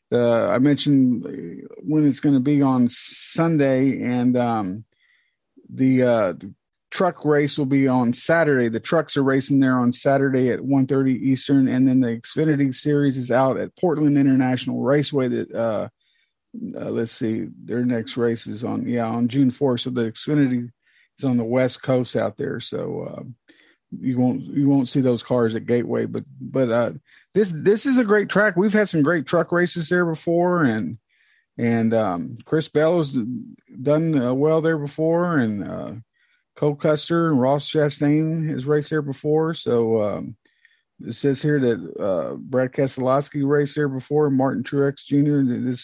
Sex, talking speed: male, 175 wpm